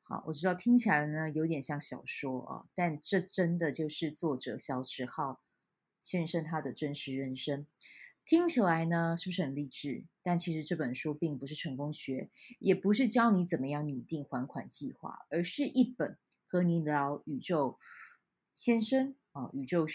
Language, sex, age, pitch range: Chinese, female, 20-39, 150-190 Hz